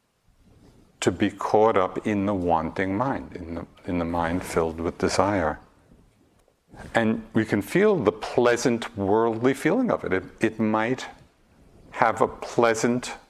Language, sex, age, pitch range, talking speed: English, male, 50-69, 90-120 Hz, 145 wpm